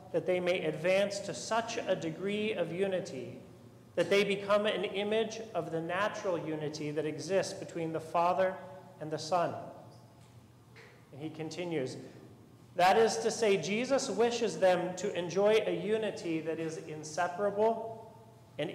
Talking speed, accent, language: 145 wpm, American, English